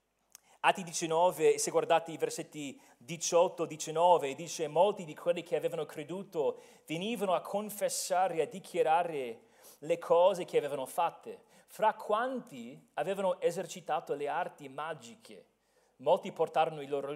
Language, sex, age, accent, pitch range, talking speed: Italian, male, 40-59, native, 155-240 Hz, 120 wpm